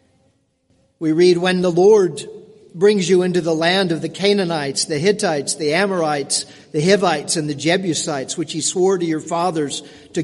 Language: English